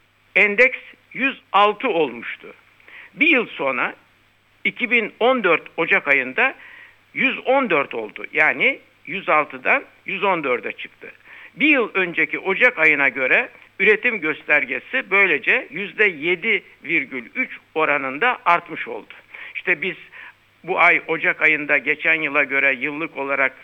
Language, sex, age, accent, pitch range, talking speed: Turkish, male, 60-79, native, 150-215 Hz, 100 wpm